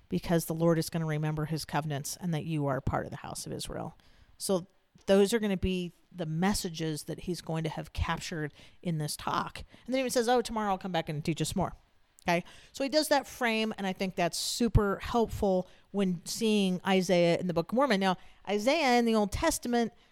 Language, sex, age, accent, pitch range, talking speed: English, female, 40-59, American, 170-235 Hz, 225 wpm